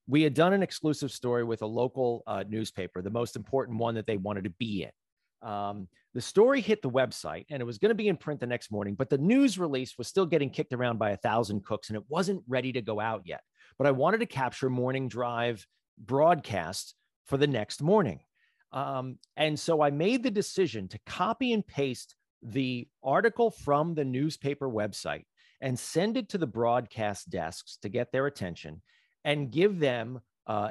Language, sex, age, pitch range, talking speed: English, male, 40-59, 110-155 Hz, 200 wpm